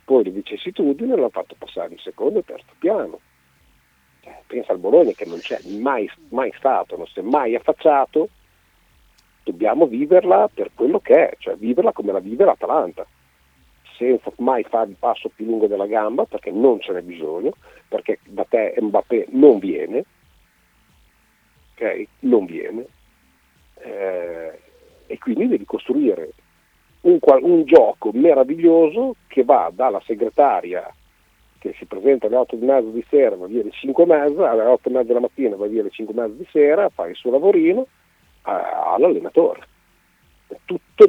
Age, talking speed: 50-69, 150 wpm